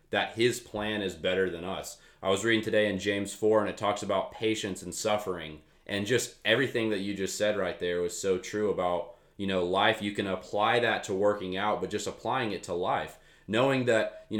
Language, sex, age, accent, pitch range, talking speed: English, male, 20-39, American, 95-110 Hz, 220 wpm